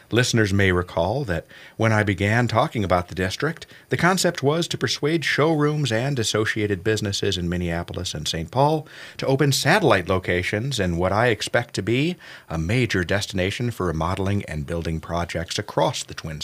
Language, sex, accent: English, male, American